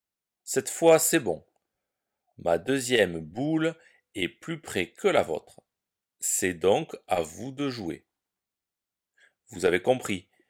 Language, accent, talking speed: French, French, 125 wpm